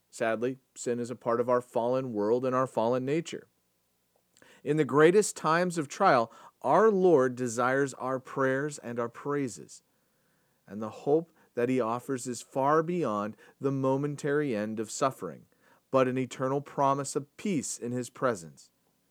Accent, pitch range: American, 125-175 Hz